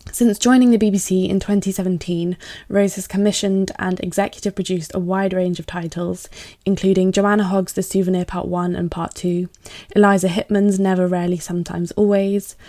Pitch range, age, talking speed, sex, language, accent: 180-200 Hz, 10-29, 155 wpm, female, English, British